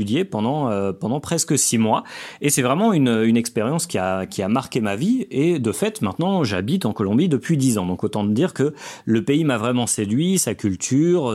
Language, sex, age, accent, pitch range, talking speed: French, male, 40-59, French, 115-175 Hz, 215 wpm